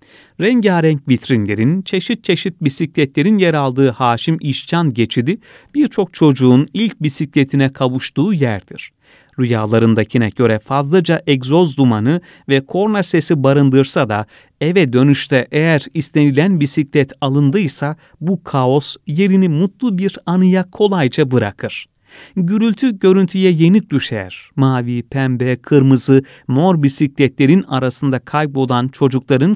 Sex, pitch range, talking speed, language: male, 130-175 Hz, 105 wpm, Turkish